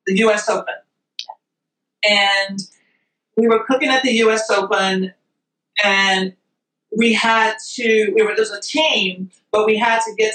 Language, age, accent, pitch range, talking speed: English, 40-59, American, 210-260 Hz, 145 wpm